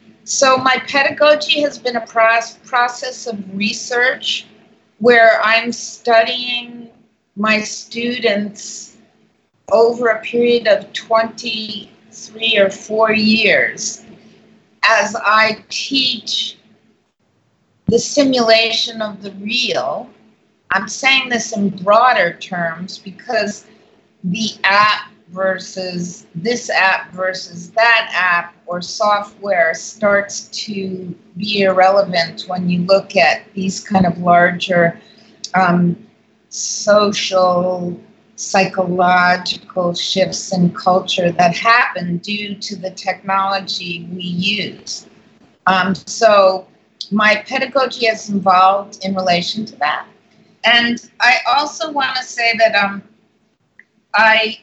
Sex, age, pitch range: female, 50-69, 190-225 Hz